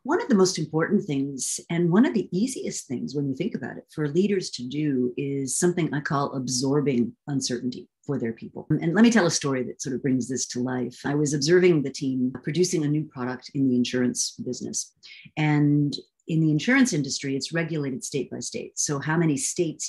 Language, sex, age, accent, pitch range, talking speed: English, female, 50-69, American, 135-185 Hz, 210 wpm